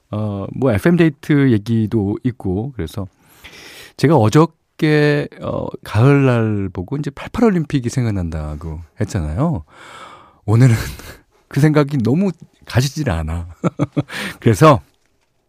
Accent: native